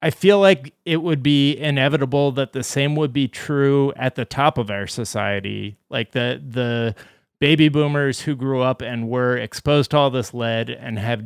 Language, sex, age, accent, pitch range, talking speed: English, male, 30-49, American, 115-135 Hz, 190 wpm